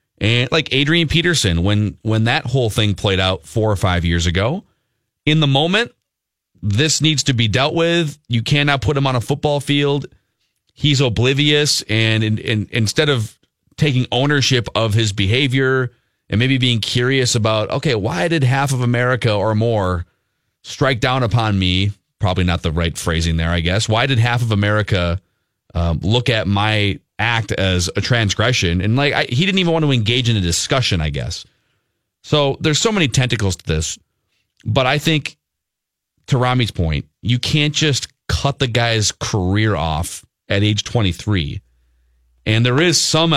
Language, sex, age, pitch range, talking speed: English, male, 30-49, 100-140 Hz, 170 wpm